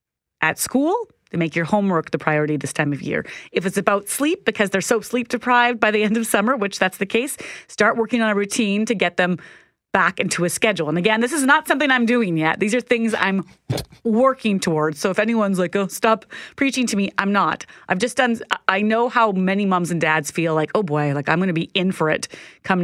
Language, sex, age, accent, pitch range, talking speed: English, female, 30-49, American, 155-215 Hz, 235 wpm